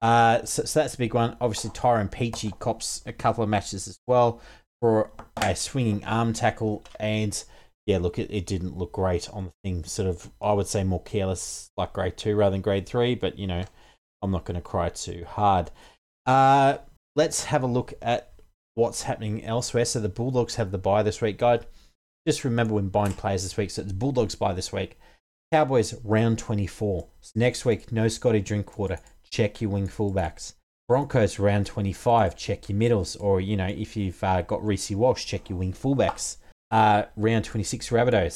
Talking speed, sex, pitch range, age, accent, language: 195 wpm, male, 100-120 Hz, 30-49, Australian, English